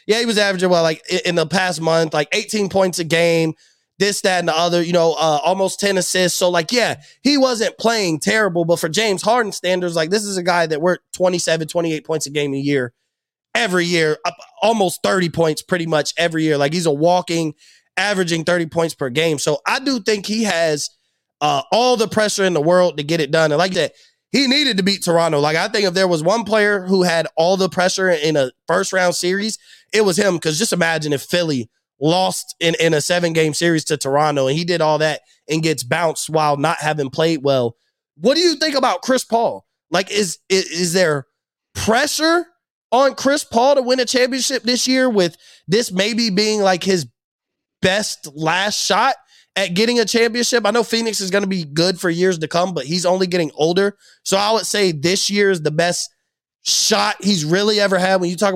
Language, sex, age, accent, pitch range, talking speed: English, male, 20-39, American, 165-210 Hz, 215 wpm